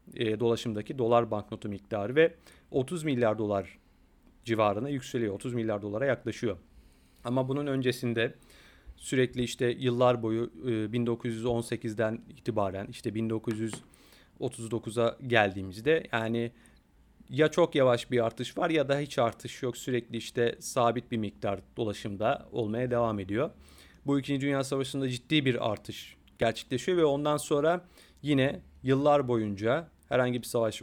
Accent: native